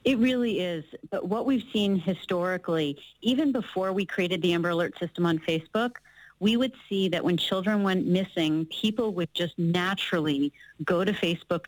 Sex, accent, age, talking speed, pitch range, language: female, American, 40-59, 170 wpm, 165-195 Hz, English